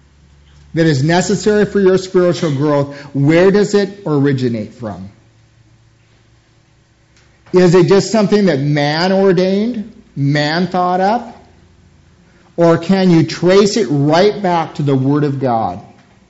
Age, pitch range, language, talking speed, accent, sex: 50-69, 145-195 Hz, English, 125 wpm, American, male